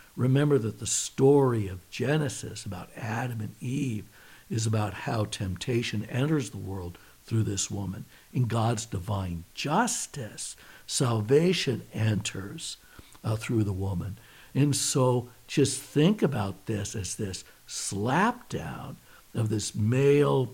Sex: male